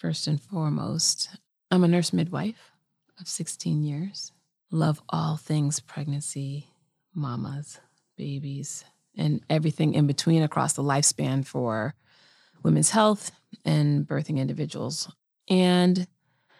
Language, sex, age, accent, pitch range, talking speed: English, female, 30-49, American, 145-175 Hz, 110 wpm